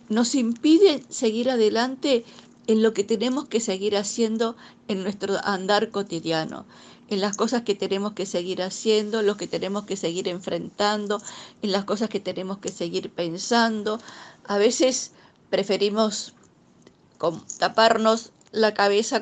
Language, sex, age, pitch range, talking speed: Spanish, female, 50-69, 190-230 Hz, 135 wpm